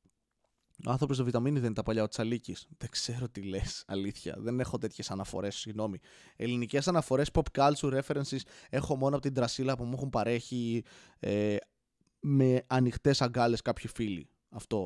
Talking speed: 170 wpm